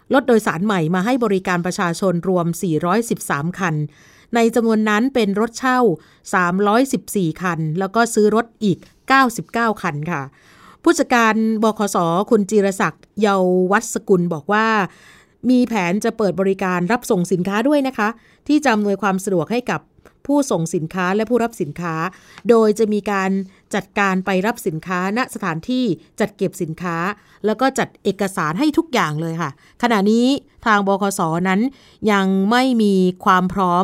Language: Thai